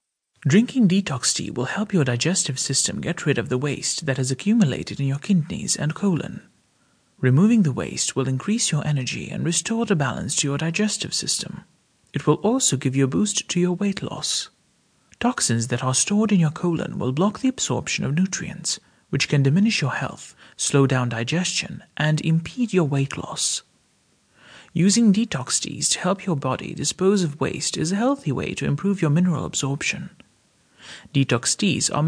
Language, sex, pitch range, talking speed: English, male, 140-195 Hz, 180 wpm